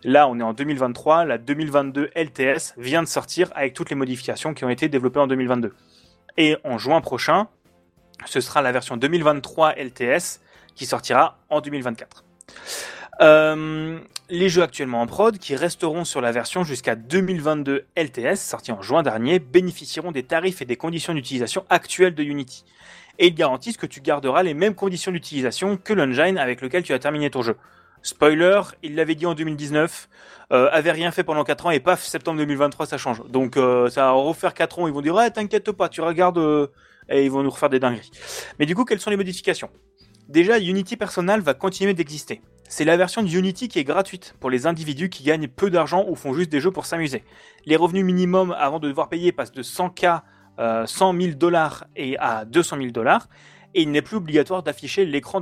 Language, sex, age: French, male, 20-39